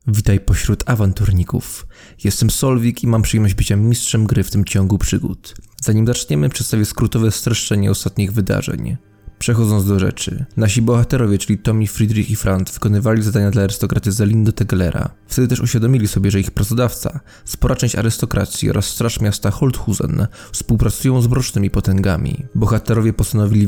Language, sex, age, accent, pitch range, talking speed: English, male, 20-39, Polish, 100-120 Hz, 145 wpm